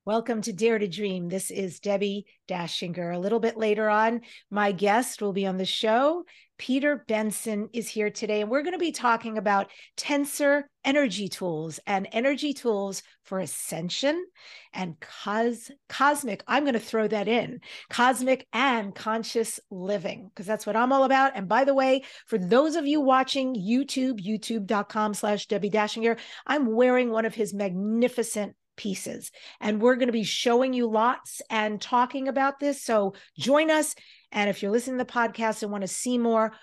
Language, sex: English, female